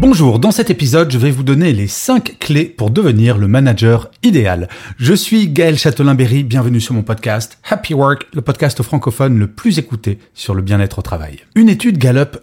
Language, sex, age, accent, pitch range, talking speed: French, male, 30-49, French, 115-165 Hz, 210 wpm